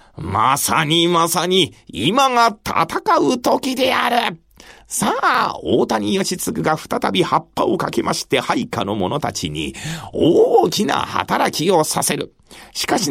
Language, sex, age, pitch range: Japanese, male, 40-59, 155-215 Hz